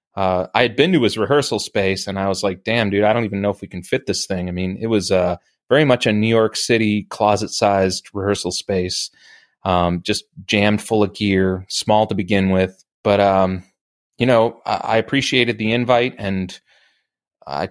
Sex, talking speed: male, 205 wpm